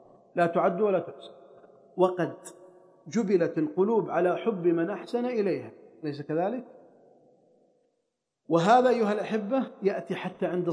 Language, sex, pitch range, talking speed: Arabic, male, 175-240 Hz, 110 wpm